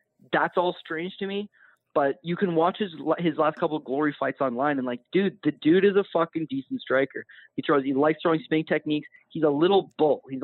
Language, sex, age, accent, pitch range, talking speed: English, male, 20-39, American, 140-175 Hz, 225 wpm